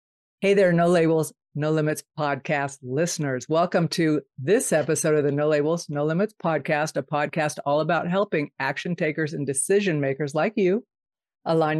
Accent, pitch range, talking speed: American, 145-180 Hz, 165 wpm